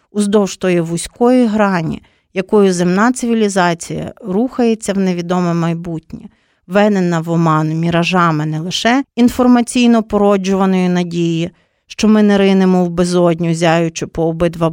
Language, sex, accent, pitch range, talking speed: Ukrainian, female, native, 175-230 Hz, 120 wpm